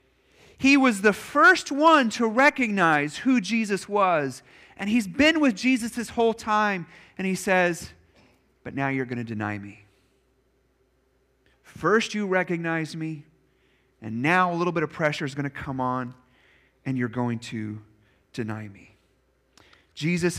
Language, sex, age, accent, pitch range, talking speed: English, male, 30-49, American, 160-255 Hz, 150 wpm